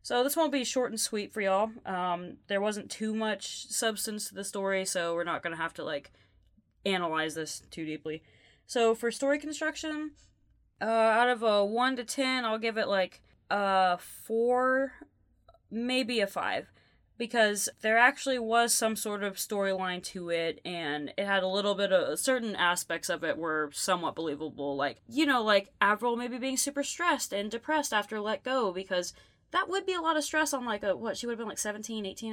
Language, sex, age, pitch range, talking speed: English, female, 20-39, 180-250 Hz, 195 wpm